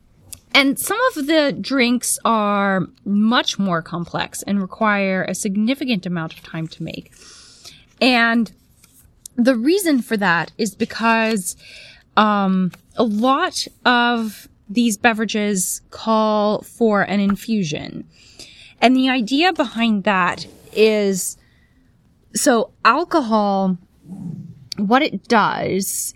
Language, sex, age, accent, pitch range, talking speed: English, female, 20-39, American, 185-235 Hz, 105 wpm